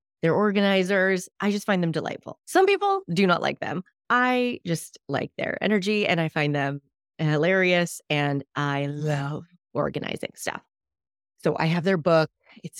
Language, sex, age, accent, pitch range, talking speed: English, female, 30-49, American, 160-230 Hz, 160 wpm